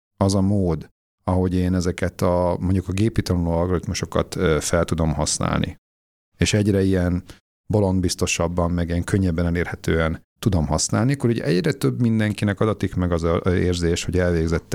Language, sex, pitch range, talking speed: Hungarian, male, 85-110 Hz, 145 wpm